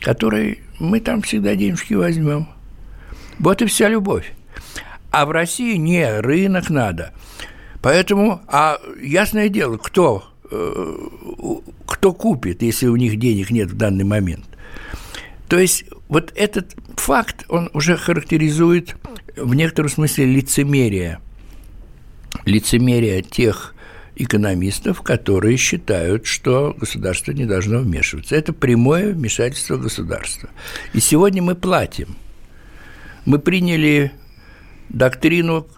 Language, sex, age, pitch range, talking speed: Russian, male, 60-79, 110-170 Hz, 105 wpm